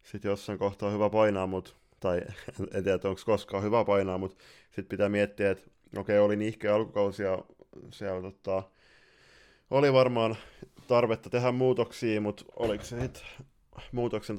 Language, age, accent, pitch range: Finnish, 20-39, native, 95-110 Hz